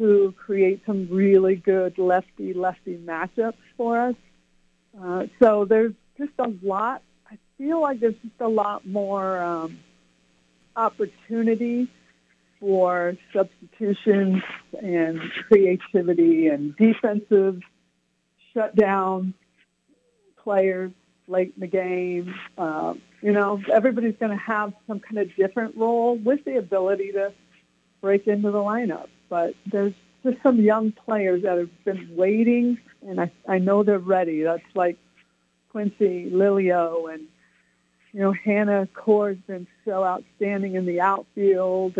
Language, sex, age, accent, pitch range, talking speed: English, female, 50-69, American, 175-210 Hz, 125 wpm